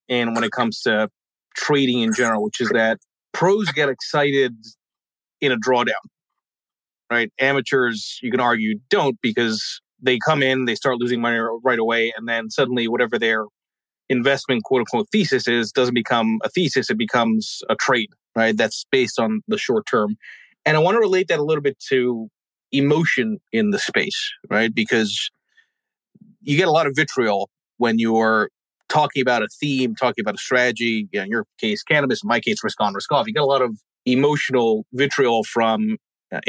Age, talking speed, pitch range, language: 30-49, 185 wpm, 115-145 Hz, English